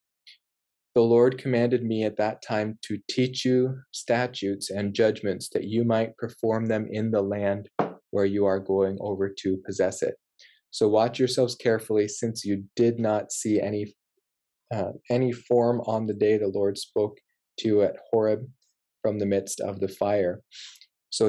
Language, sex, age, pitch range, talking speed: English, male, 20-39, 100-120 Hz, 165 wpm